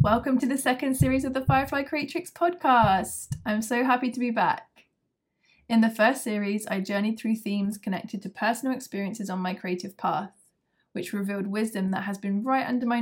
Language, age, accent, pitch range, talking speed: English, 20-39, British, 200-240 Hz, 190 wpm